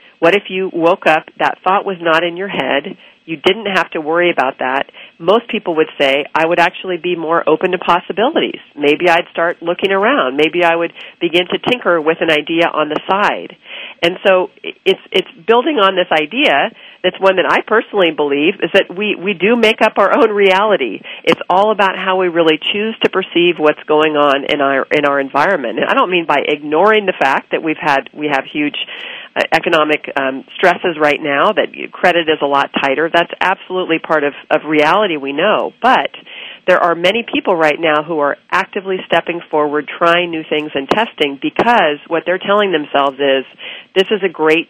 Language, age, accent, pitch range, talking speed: English, 40-59, American, 150-190 Hz, 200 wpm